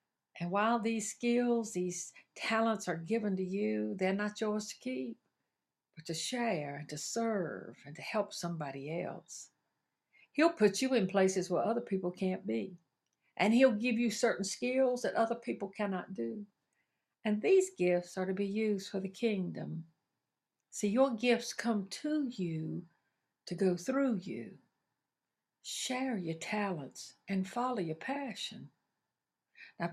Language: English